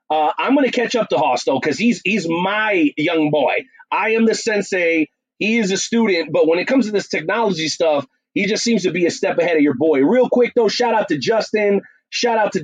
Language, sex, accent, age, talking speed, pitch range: English, male, American, 30-49, 240 wpm, 175-230 Hz